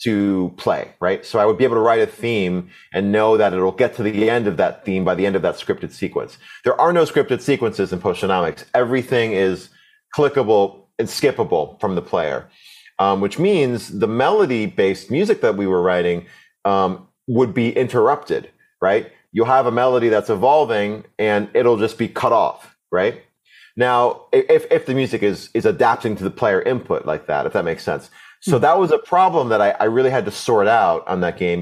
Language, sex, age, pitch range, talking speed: English, male, 30-49, 95-125 Hz, 205 wpm